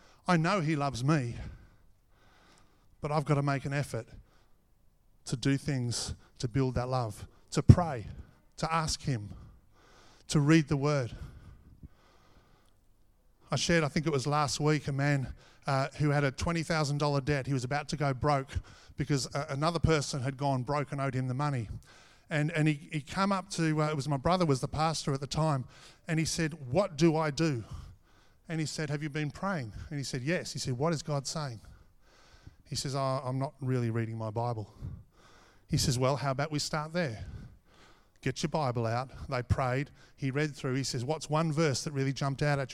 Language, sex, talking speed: English, male, 195 wpm